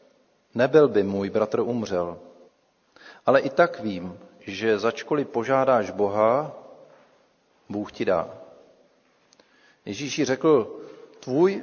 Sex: male